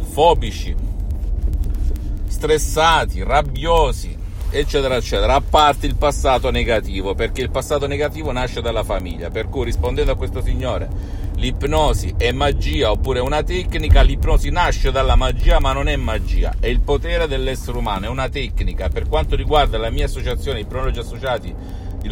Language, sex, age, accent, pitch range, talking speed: Italian, male, 50-69, native, 90-120 Hz, 150 wpm